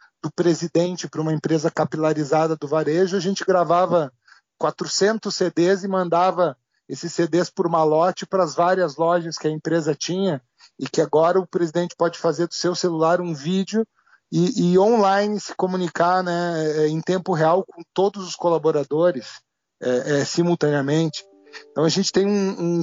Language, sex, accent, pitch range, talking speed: Portuguese, male, Brazilian, 155-190 Hz, 155 wpm